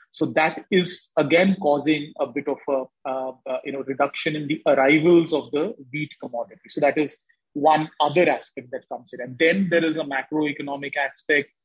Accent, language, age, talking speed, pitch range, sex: Indian, English, 30-49, 170 wpm, 140-165 Hz, male